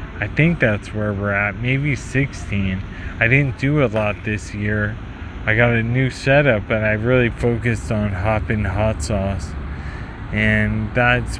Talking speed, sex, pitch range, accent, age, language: 160 wpm, male, 100-120 Hz, American, 20-39, English